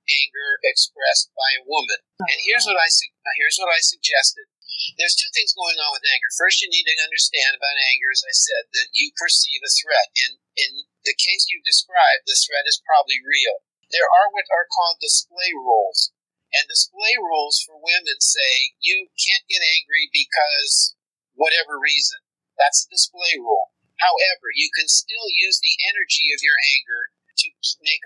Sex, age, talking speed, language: male, 50-69, 180 wpm, English